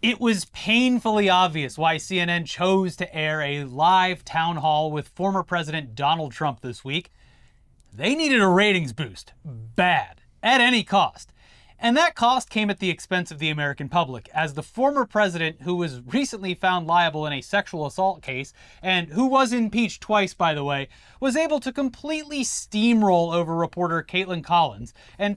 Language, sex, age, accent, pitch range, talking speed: English, male, 30-49, American, 160-230 Hz, 170 wpm